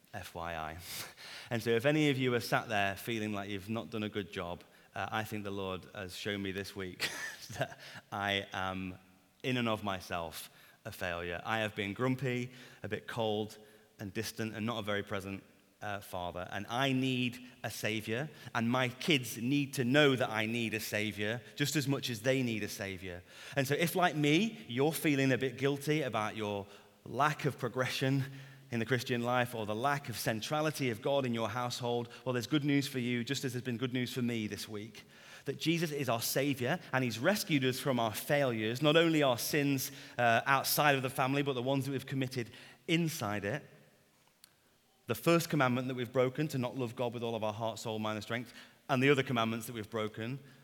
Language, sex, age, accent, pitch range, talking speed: English, male, 30-49, British, 105-135 Hz, 210 wpm